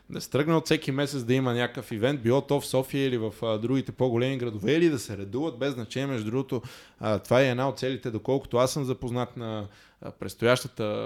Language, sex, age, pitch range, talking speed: Bulgarian, male, 20-39, 120-155 Hz, 215 wpm